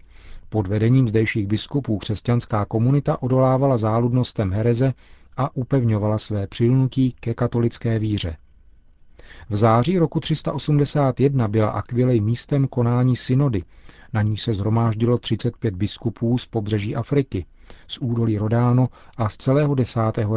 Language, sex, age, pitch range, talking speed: Czech, male, 40-59, 105-125 Hz, 120 wpm